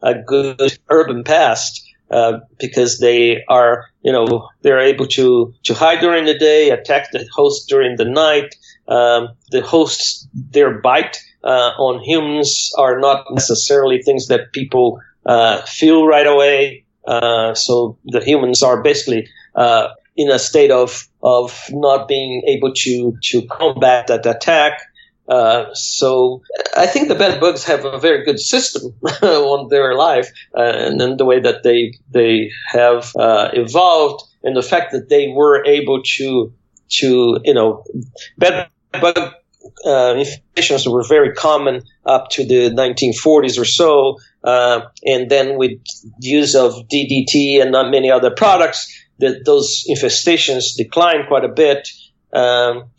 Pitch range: 120-155 Hz